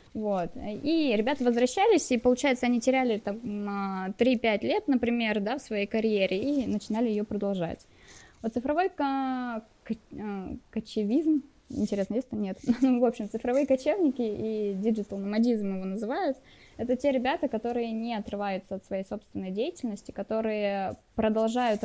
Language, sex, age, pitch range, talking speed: Russian, female, 20-39, 205-245 Hz, 130 wpm